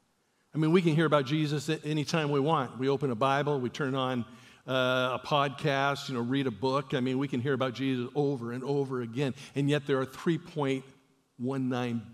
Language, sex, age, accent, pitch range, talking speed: English, male, 50-69, American, 125-160 Hz, 215 wpm